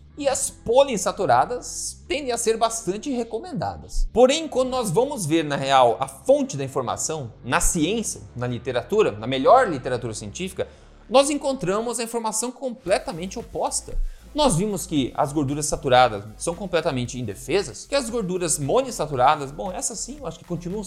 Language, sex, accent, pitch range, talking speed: Portuguese, male, Brazilian, 140-225 Hz, 150 wpm